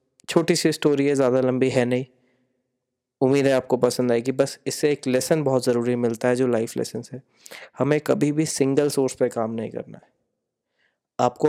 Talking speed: 190 wpm